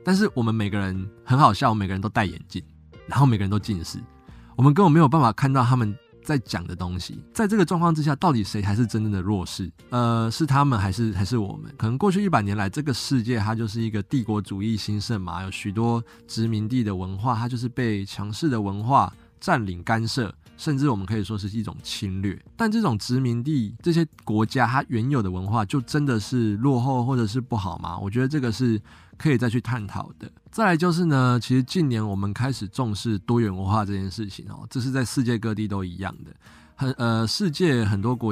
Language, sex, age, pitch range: Chinese, male, 20-39, 100-130 Hz